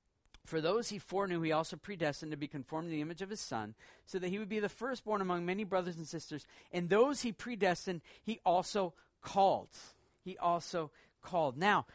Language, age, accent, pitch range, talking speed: English, 40-59, American, 145-195 Hz, 195 wpm